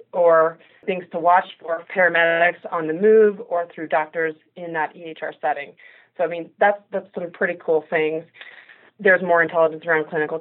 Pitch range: 155-185 Hz